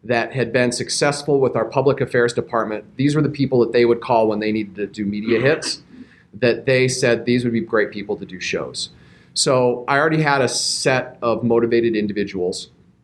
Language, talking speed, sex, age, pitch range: English, 205 wpm, male, 40-59, 110-140 Hz